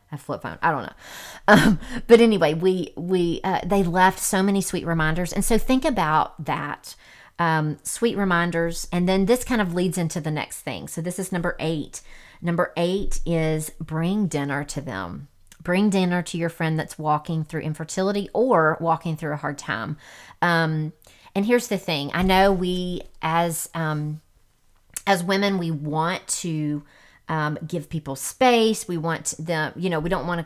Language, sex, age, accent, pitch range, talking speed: English, female, 40-59, American, 155-190 Hz, 180 wpm